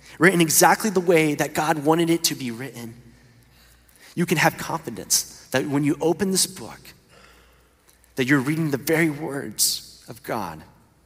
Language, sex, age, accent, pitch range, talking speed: English, male, 30-49, American, 115-160 Hz, 155 wpm